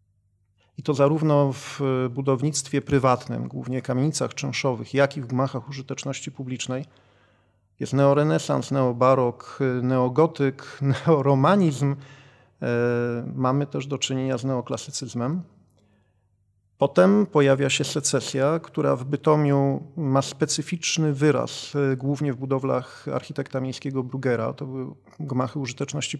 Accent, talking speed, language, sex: native, 110 wpm, Polish, male